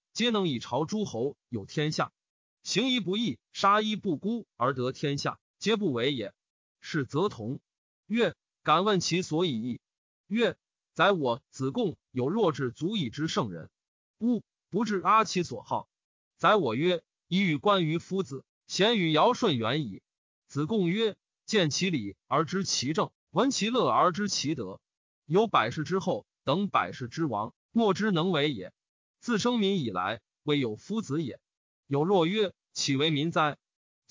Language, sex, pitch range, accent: Chinese, male, 150-210 Hz, native